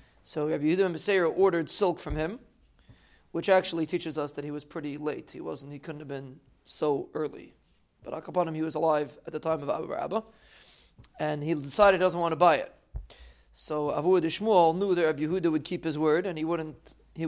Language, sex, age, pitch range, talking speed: English, male, 30-49, 140-170 Hz, 205 wpm